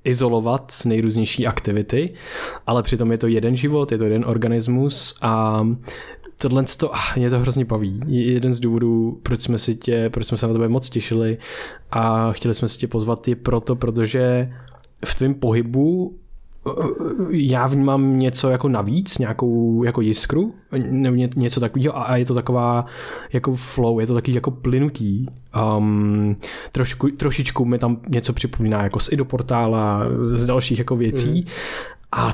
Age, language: 20-39, Czech